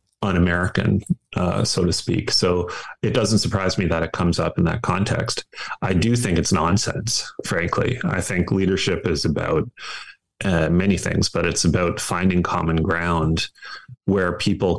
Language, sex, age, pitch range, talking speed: English, male, 30-49, 85-100 Hz, 155 wpm